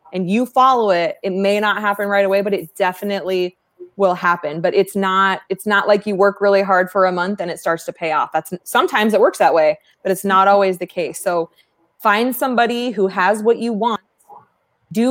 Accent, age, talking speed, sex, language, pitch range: American, 20-39, 220 wpm, female, English, 170-205 Hz